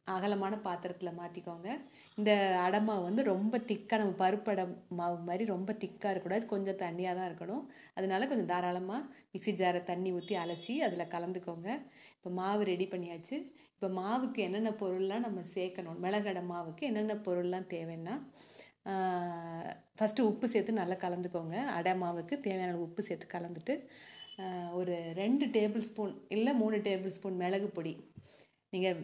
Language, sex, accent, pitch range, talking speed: Tamil, female, native, 180-215 Hz, 135 wpm